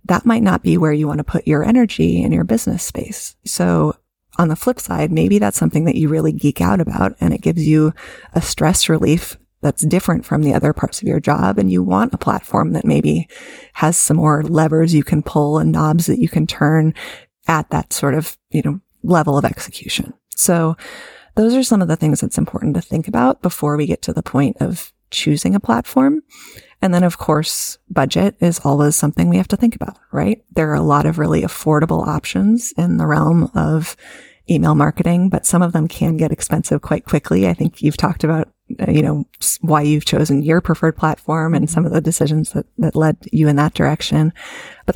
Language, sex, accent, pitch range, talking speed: English, female, American, 150-175 Hz, 210 wpm